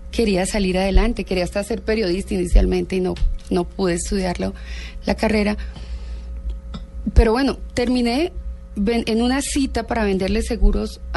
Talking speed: 135 wpm